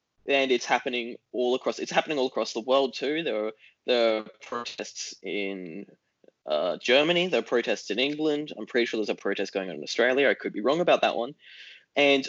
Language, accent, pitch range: English, Australian, 120-150 Hz